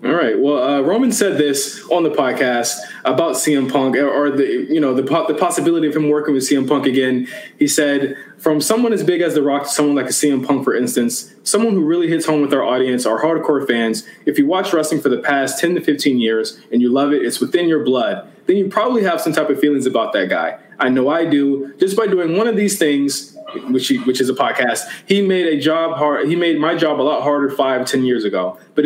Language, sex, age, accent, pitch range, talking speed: English, male, 20-39, American, 135-180 Hz, 250 wpm